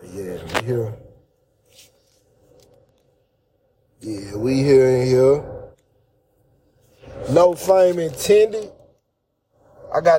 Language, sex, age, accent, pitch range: English, male, 30-49, American, 145-190 Hz